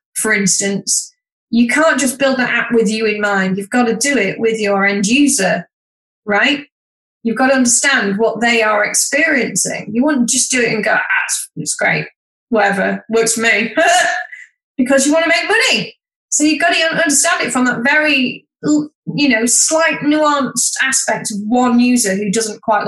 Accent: British